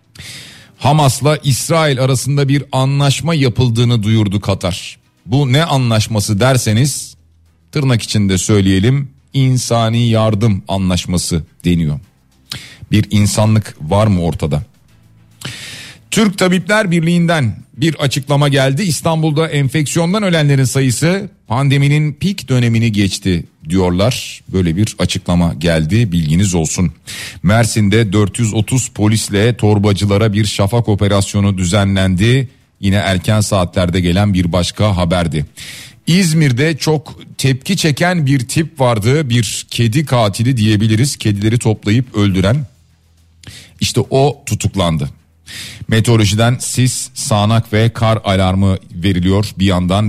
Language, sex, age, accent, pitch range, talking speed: Turkish, male, 40-59, native, 100-135 Hz, 105 wpm